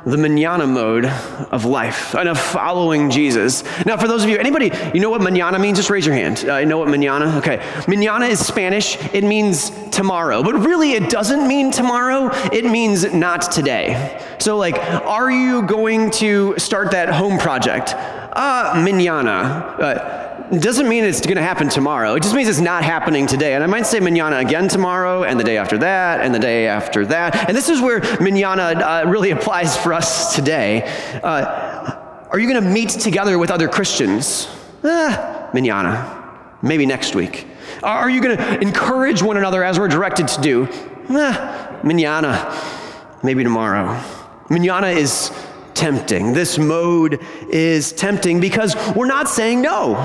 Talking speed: 175 wpm